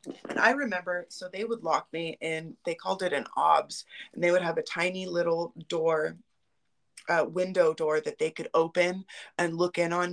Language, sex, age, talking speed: English, female, 20-39, 195 wpm